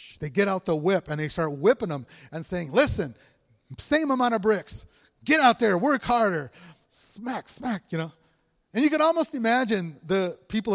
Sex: male